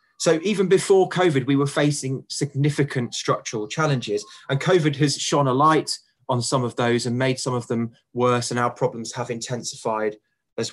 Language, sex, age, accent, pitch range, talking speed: English, male, 20-39, British, 120-150 Hz, 180 wpm